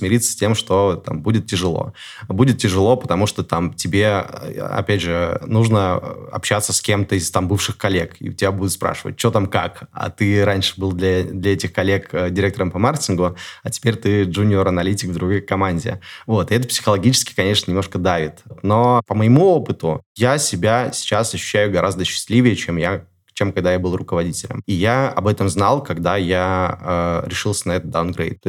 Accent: native